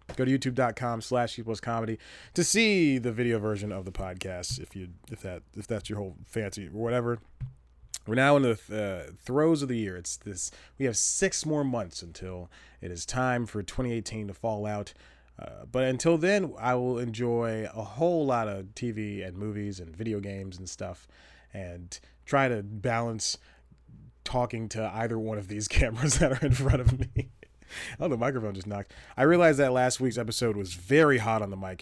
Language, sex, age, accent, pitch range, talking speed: English, male, 30-49, American, 100-125 Hz, 190 wpm